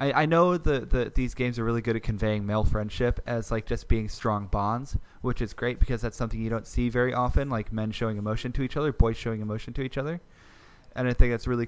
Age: 20-39